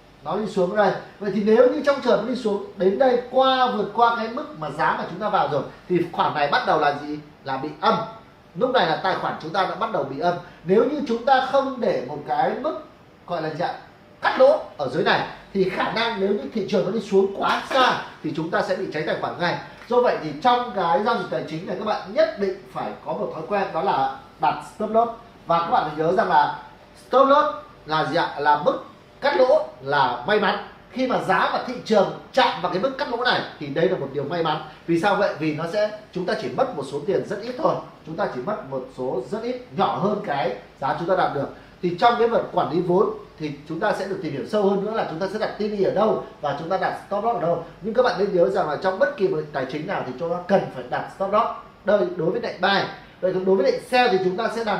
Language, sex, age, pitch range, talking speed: English, male, 30-49, 175-230 Hz, 275 wpm